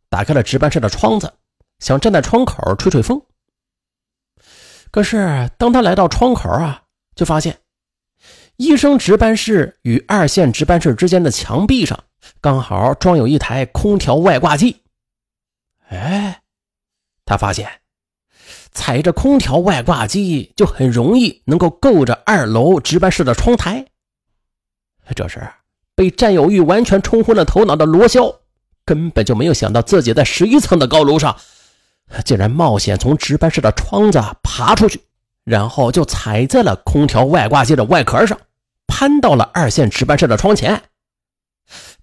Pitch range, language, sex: 120-200 Hz, Chinese, male